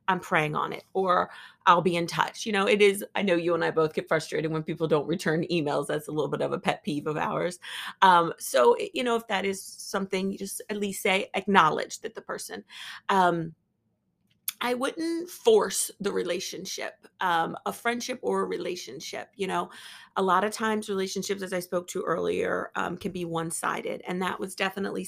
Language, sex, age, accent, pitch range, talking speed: English, female, 30-49, American, 180-245 Hz, 205 wpm